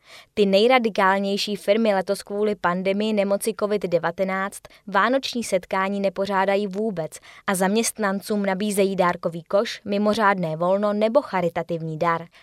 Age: 20-39